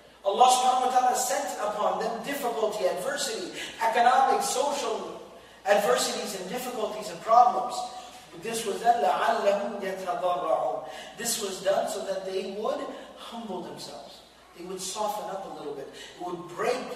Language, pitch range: Malay, 195-265 Hz